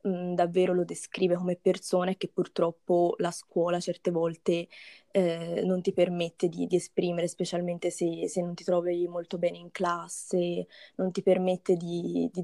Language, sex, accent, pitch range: Italian, female, native, 170-185 Hz